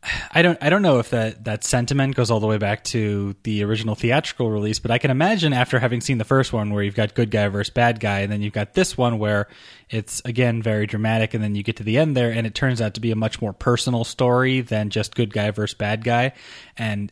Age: 20-39